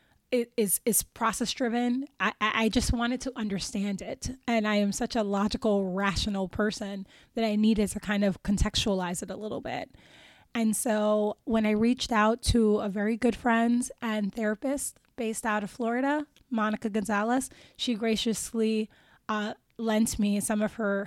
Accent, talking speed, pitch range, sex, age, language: American, 160 wpm, 210-235 Hz, female, 20-39, English